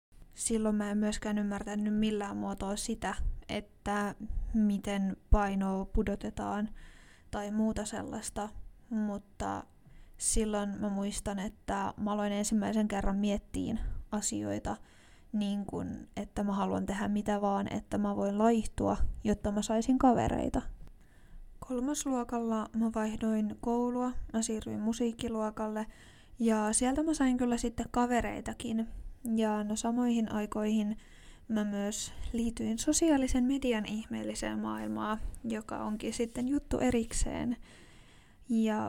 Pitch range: 205-230 Hz